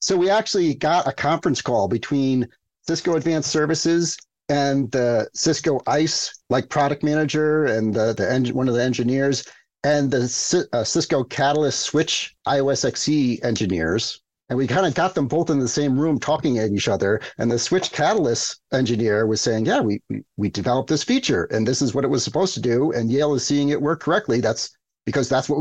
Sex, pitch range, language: male, 120-155 Hz, English